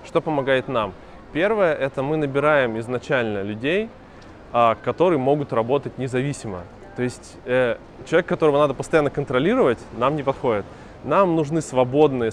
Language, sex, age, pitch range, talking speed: Russian, male, 20-39, 120-145 Hz, 135 wpm